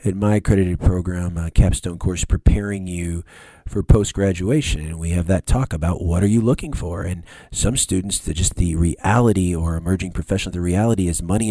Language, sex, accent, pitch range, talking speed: English, male, American, 90-105 Hz, 185 wpm